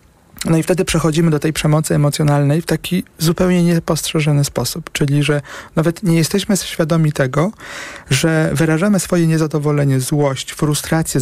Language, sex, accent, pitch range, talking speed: Polish, male, native, 140-165 Hz, 140 wpm